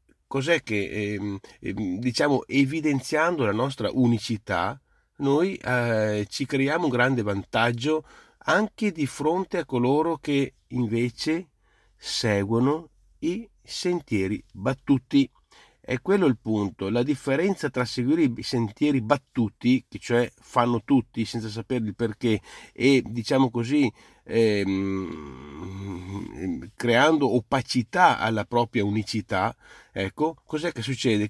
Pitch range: 105-140 Hz